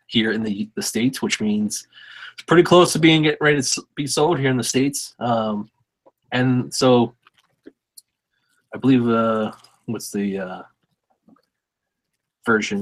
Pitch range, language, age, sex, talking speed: 110-140 Hz, English, 30-49, male, 145 wpm